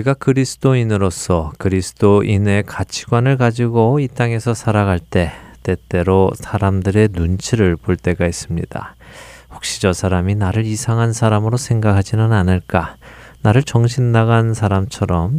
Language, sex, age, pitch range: Korean, male, 20-39, 90-115 Hz